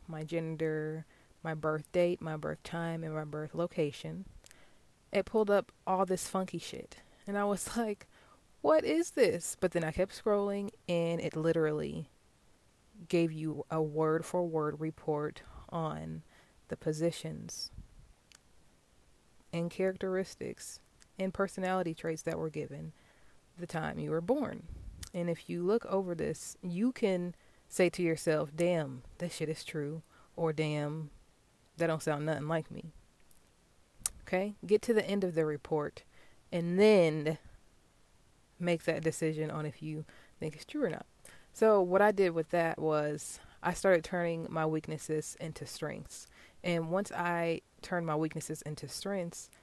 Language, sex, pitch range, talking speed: English, female, 155-185 Hz, 150 wpm